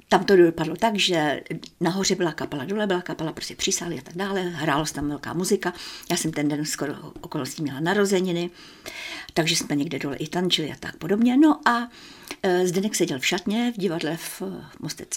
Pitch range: 170-225 Hz